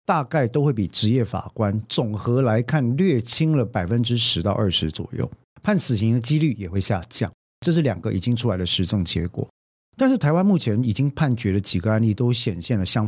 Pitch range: 100-145 Hz